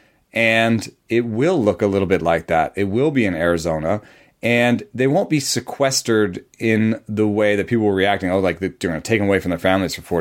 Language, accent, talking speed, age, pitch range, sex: English, American, 225 wpm, 30-49, 90-115 Hz, male